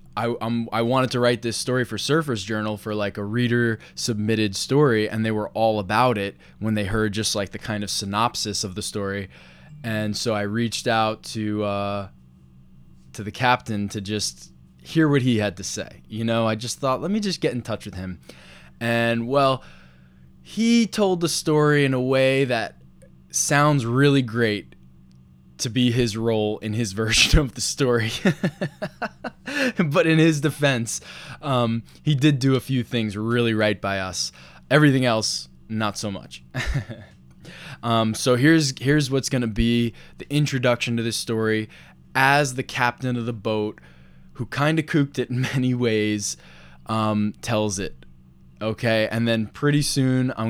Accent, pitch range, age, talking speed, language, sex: American, 105-130 Hz, 20-39, 170 wpm, English, male